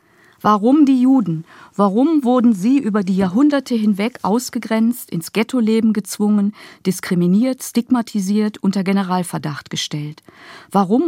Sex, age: female, 50-69